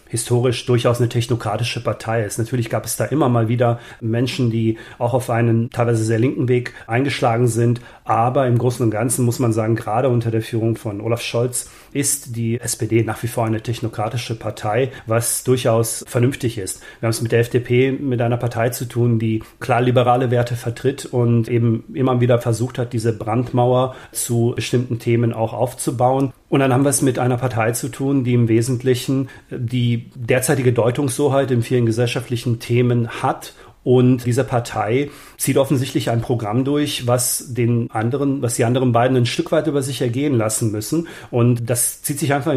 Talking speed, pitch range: 185 wpm, 115-130 Hz